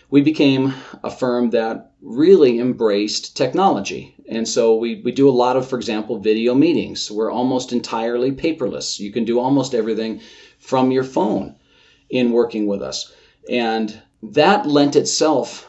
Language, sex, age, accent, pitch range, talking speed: English, male, 40-59, American, 110-130 Hz, 155 wpm